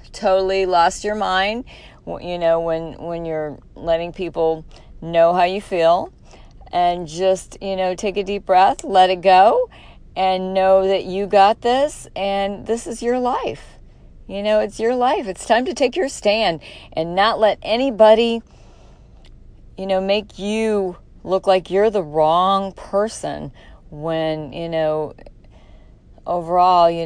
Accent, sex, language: American, female, English